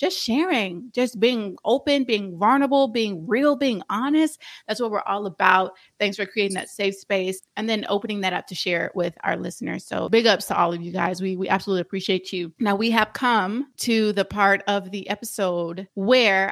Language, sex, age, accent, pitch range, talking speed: English, female, 30-49, American, 195-255 Hz, 205 wpm